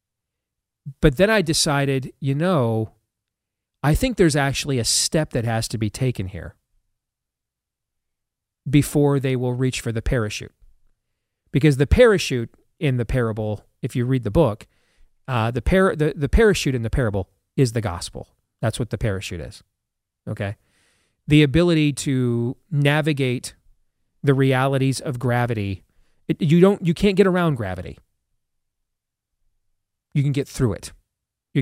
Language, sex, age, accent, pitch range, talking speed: English, male, 40-59, American, 110-145 Hz, 145 wpm